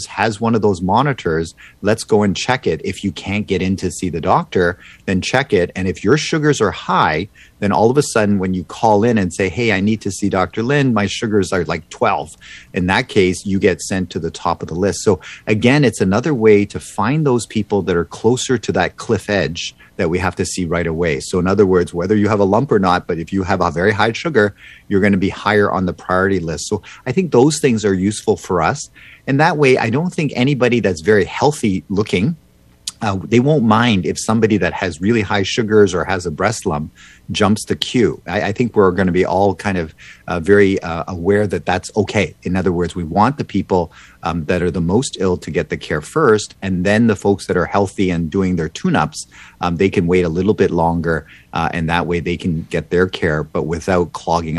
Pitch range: 90-110 Hz